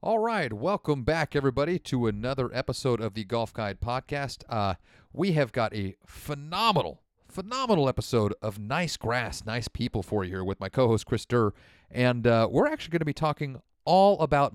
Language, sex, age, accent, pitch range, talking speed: English, male, 40-59, American, 110-135 Hz, 180 wpm